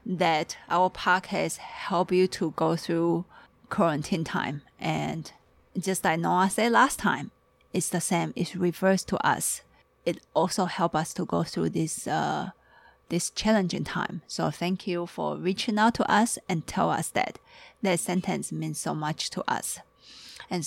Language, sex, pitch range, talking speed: English, female, 170-215 Hz, 165 wpm